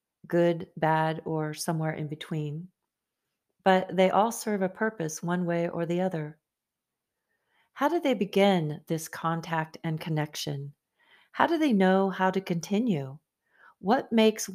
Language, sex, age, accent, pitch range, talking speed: English, female, 40-59, American, 165-200 Hz, 140 wpm